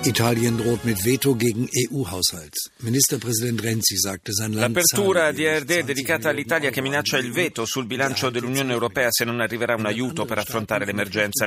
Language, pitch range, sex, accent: Italian, 105-130 Hz, male, native